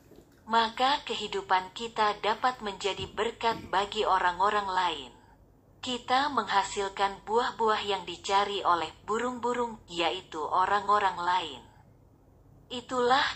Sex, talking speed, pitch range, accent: female, 90 wpm, 190-230 Hz, native